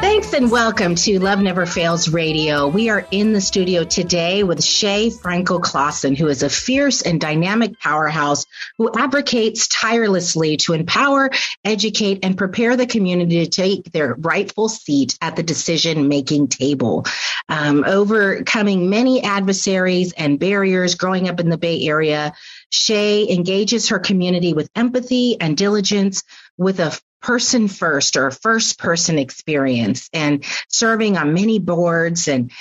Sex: female